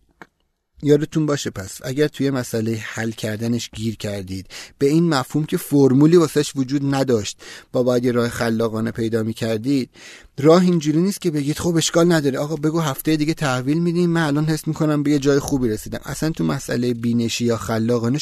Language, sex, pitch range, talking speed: Persian, male, 120-155 Hz, 185 wpm